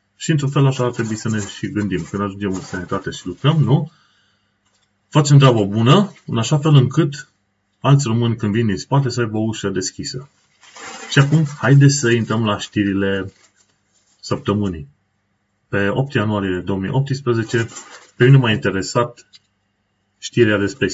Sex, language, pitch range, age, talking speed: male, Romanian, 100-125 Hz, 30-49, 150 wpm